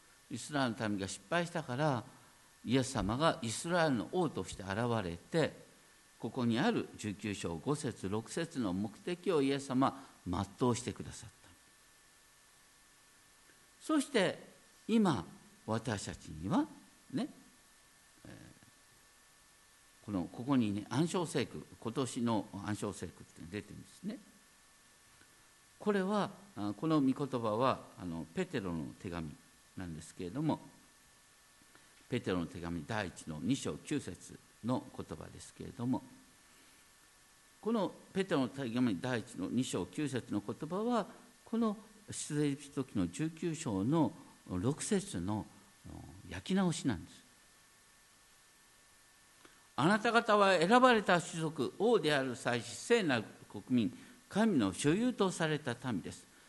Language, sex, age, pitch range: Japanese, male, 50-69, 110-180 Hz